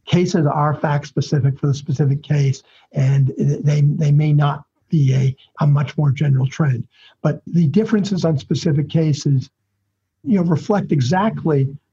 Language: English